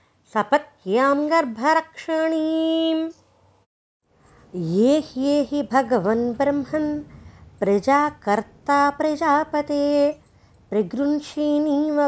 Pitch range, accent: 270-315 Hz, native